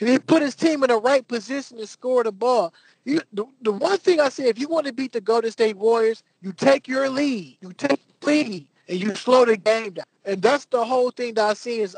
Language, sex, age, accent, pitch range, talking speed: English, male, 20-39, American, 180-245 Hz, 260 wpm